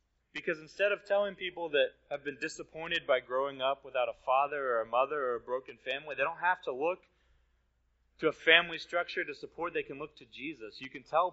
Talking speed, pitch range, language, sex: 215 wpm, 115-170 Hz, English, male